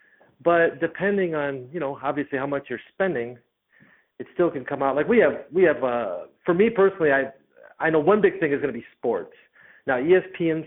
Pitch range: 130-170 Hz